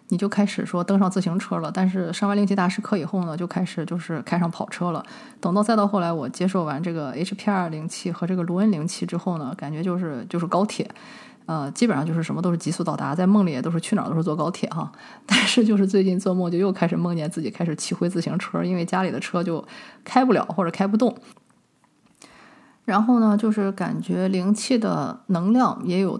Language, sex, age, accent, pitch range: Chinese, female, 20-39, native, 170-210 Hz